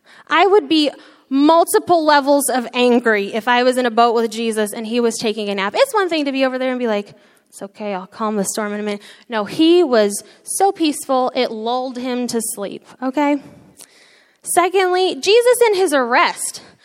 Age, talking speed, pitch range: 10-29, 200 wpm, 220-295 Hz